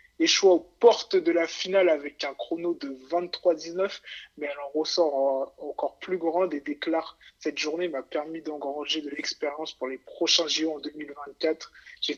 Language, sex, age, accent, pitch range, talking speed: French, male, 20-39, French, 150-190 Hz, 170 wpm